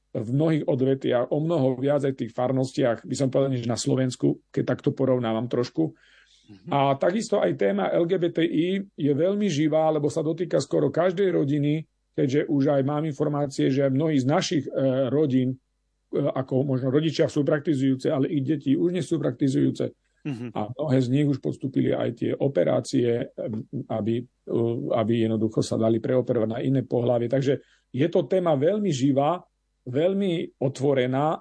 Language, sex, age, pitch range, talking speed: Slovak, male, 40-59, 130-155 Hz, 155 wpm